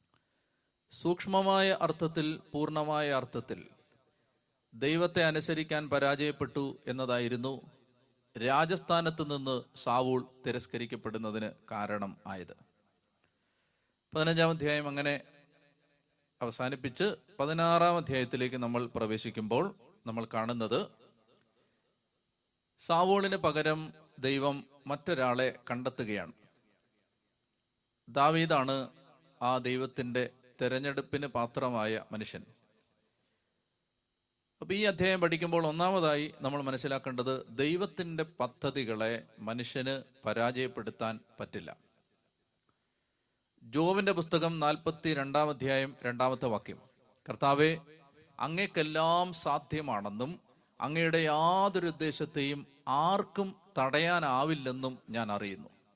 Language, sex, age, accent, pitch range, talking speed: Malayalam, male, 30-49, native, 125-160 Hz, 70 wpm